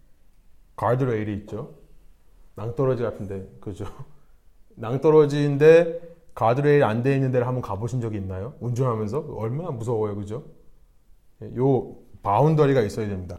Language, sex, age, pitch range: Korean, male, 30-49, 110-150 Hz